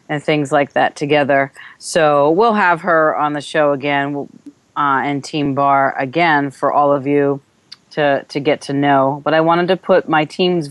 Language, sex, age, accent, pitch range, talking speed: English, female, 30-49, American, 145-185 Hz, 190 wpm